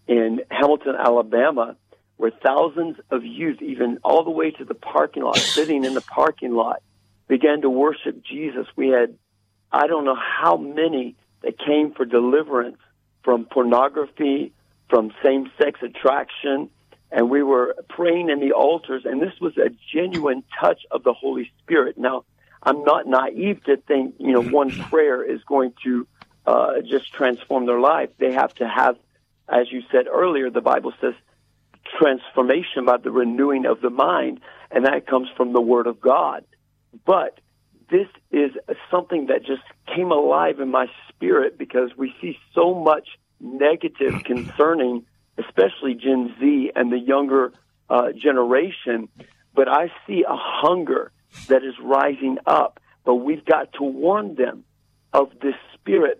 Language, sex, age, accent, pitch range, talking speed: English, male, 50-69, American, 125-160 Hz, 155 wpm